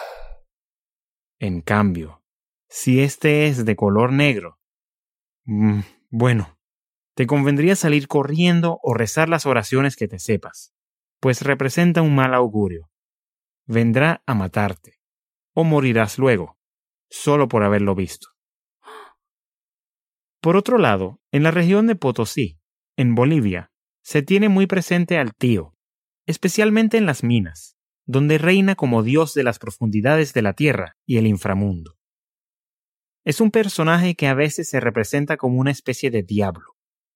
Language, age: English, 30-49